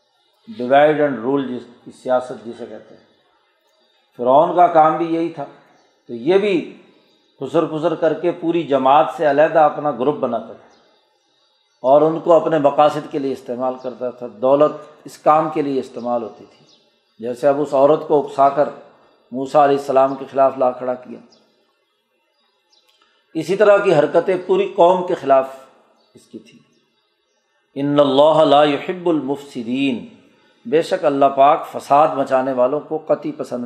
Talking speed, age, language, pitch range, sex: 155 wpm, 50-69, Urdu, 135-170 Hz, male